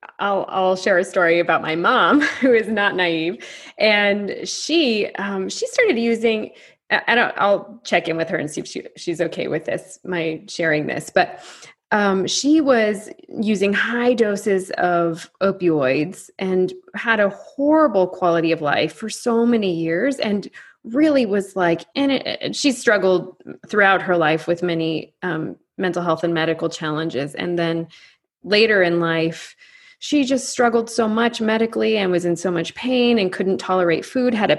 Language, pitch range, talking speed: English, 175-230 Hz, 170 wpm